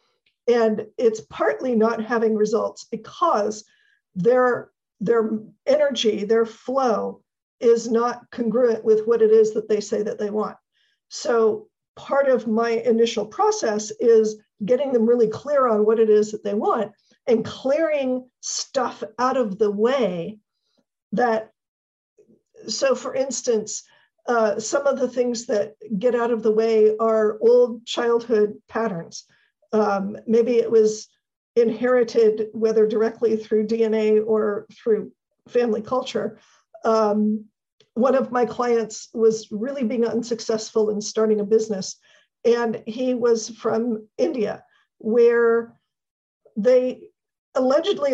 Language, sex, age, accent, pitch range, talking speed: English, female, 50-69, American, 215-245 Hz, 130 wpm